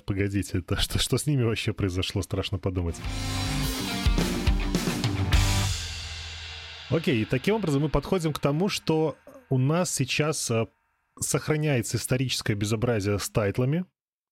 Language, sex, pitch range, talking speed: Russian, male, 95-125 Hz, 115 wpm